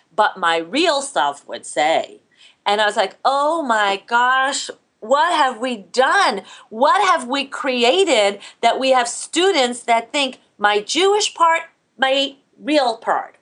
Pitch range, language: 210-285 Hz, English